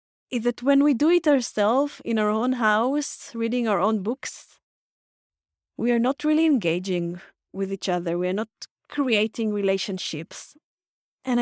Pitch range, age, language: 195-255 Hz, 30-49, English